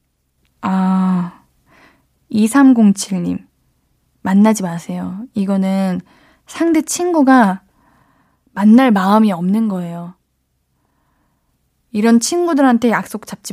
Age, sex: 20-39, female